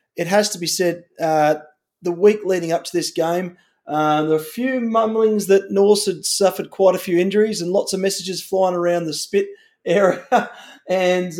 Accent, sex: Australian, male